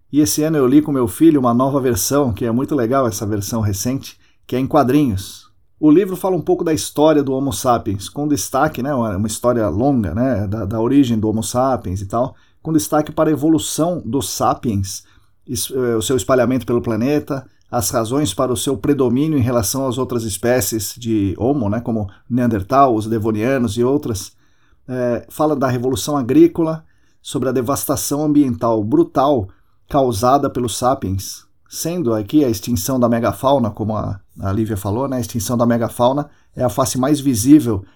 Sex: male